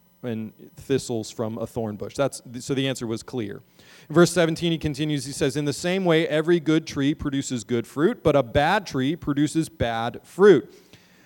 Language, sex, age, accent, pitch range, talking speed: English, male, 40-59, American, 115-175 Hz, 190 wpm